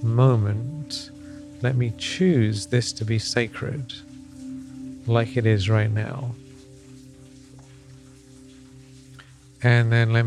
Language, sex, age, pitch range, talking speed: English, male, 40-59, 110-130 Hz, 95 wpm